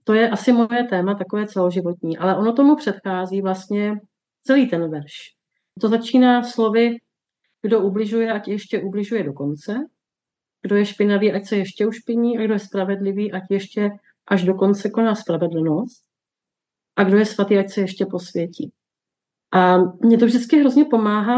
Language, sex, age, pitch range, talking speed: Czech, female, 40-59, 185-220 Hz, 165 wpm